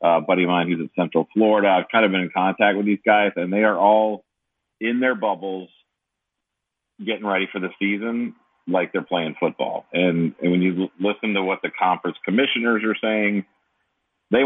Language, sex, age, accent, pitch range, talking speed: English, male, 40-59, American, 85-100 Hz, 190 wpm